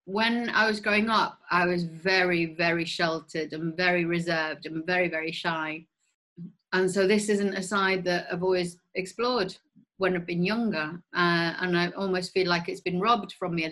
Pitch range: 165-190 Hz